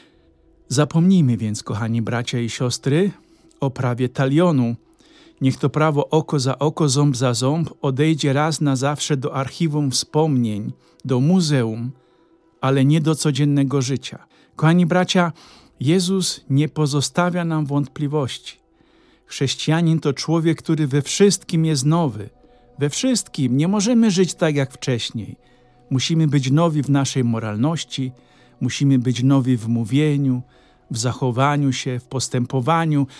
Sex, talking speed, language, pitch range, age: male, 130 wpm, Polish, 130-165 Hz, 50-69